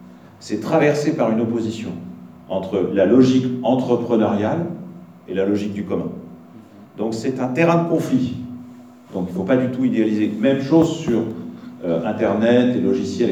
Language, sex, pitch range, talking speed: English, male, 90-150 Hz, 160 wpm